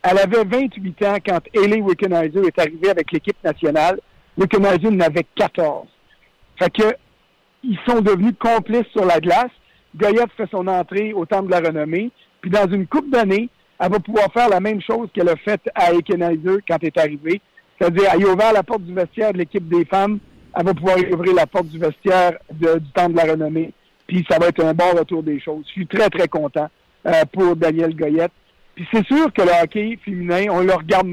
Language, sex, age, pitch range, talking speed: French, male, 60-79, 175-215 Hz, 210 wpm